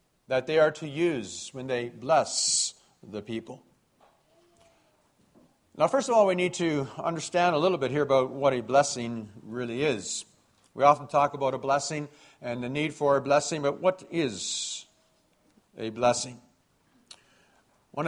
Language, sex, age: English, male, 50-69